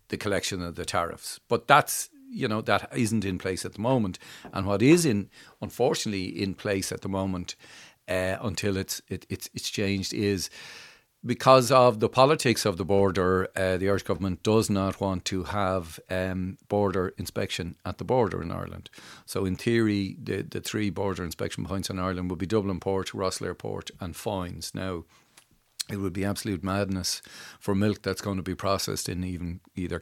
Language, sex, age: English, male, 40-59